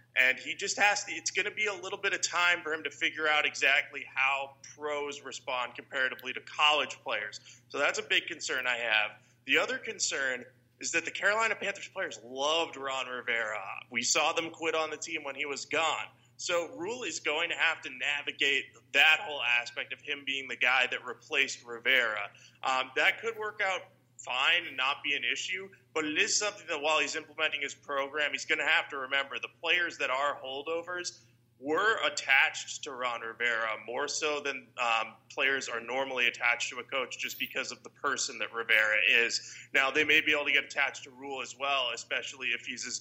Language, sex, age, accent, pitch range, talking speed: English, male, 20-39, American, 125-160 Hz, 205 wpm